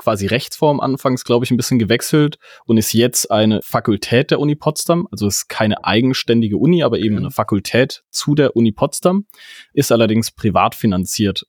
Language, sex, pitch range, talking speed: English, male, 100-120 Hz, 180 wpm